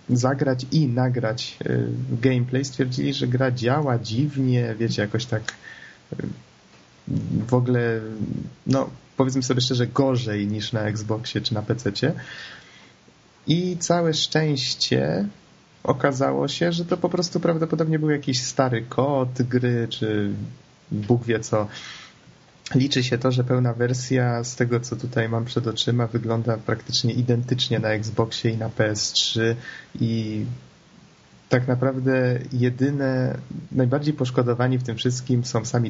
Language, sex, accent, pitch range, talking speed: Polish, male, native, 115-130 Hz, 125 wpm